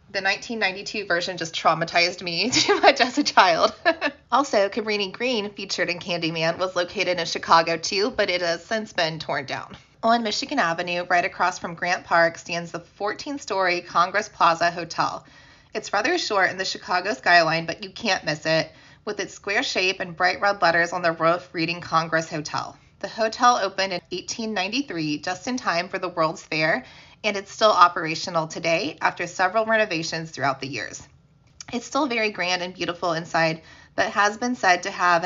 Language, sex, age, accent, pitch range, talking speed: English, female, 20-39, American, 170-215 Hz, 175 wpm